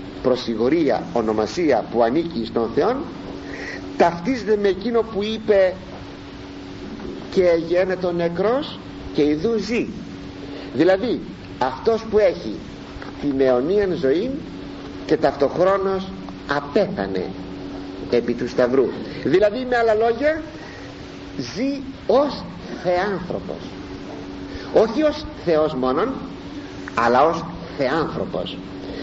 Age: 50-69